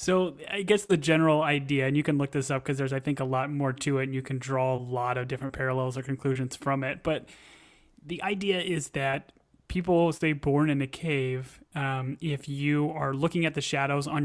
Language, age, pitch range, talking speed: English, 30-49, 135-145 Hz, 230 wpm